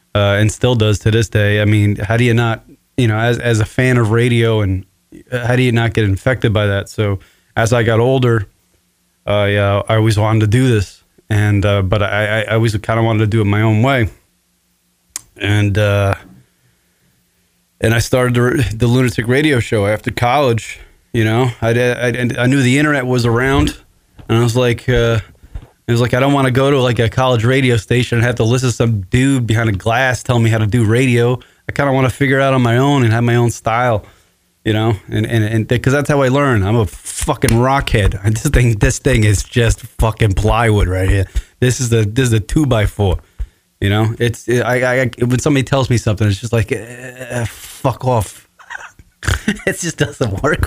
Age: 20-39